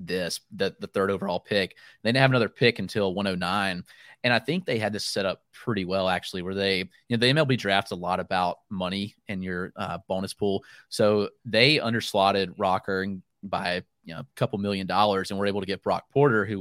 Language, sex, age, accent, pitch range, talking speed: English, male, 30-49, American, 95-120 Hz, 215 wpm